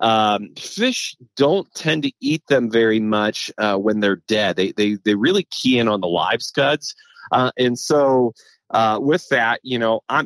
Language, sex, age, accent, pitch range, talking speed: English, male, 30-49, American, 105-130 Hz, 185 wpm